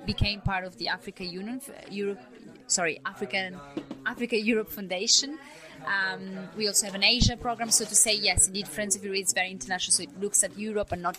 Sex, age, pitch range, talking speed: female, 20-39, 185-215 Hz, 200 wpm